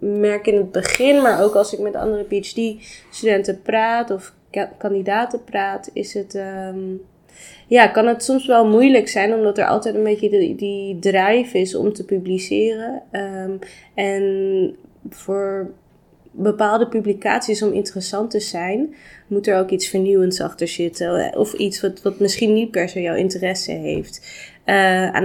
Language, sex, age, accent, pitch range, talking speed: Dutch, female, 20-39, Dutch, 175-205 Hz, 160 wpm